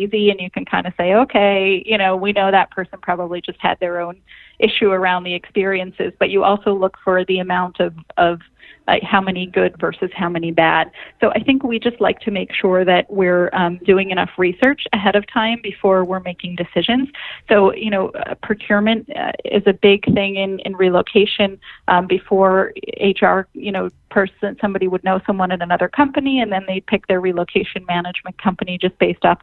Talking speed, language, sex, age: 200 wpm, English, female, 30-49